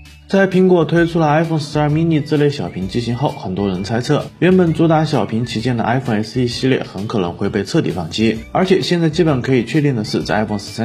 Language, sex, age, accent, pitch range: Chinese, male, 30-49, native, 110-155 Hz